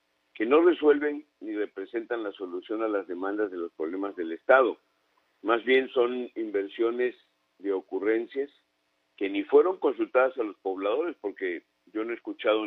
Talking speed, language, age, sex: 155 wpm, Spanish, 50-69, male